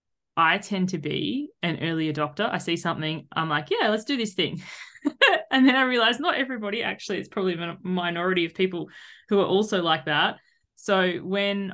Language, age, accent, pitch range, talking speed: English, 20-39, Australian, 155-190 Hz, 190 wpm